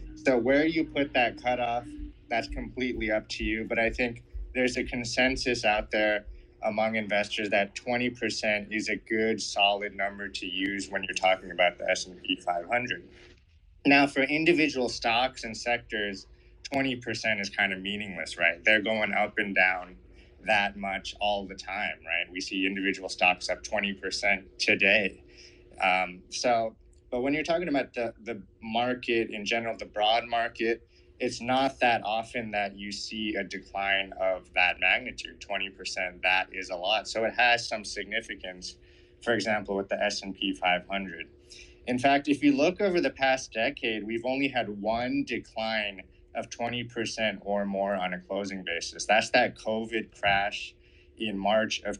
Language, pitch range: English, 95-120 Hz